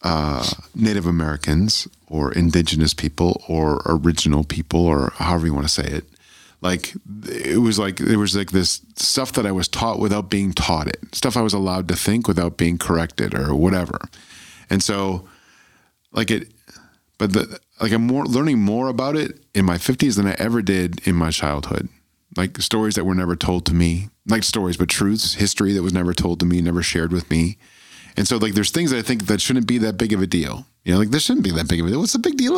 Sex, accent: male, American